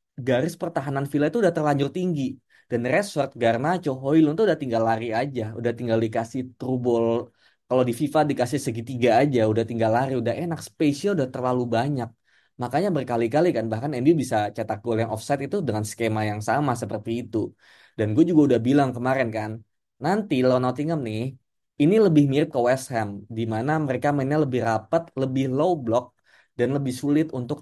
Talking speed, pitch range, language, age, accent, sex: 175 wpm, 115-150 Hz, Indonesian, 20-39, native, male